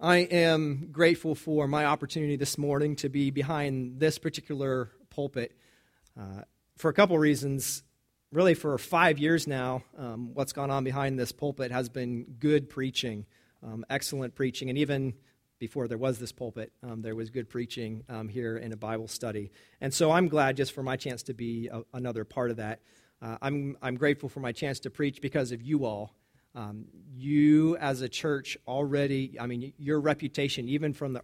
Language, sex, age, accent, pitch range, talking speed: English, male, 40-59, American, 120-145 Hz, 185 wpm